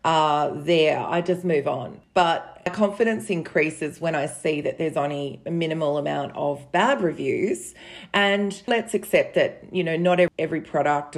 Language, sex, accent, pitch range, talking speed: English, female, Australian, 155-200 Hz, 160 wpm